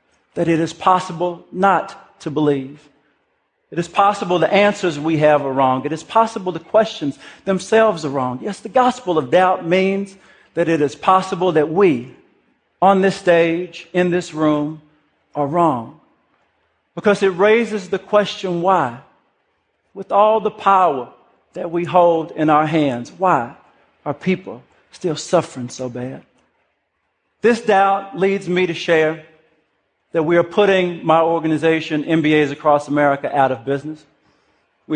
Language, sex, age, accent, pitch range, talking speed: English, male, 50-69, American, 150-185 Hz, 150 wpm